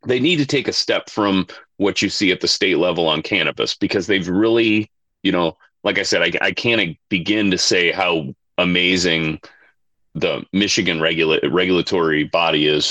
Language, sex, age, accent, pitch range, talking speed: English, male, 30-49, American, 85-110 Hz, 170 wpm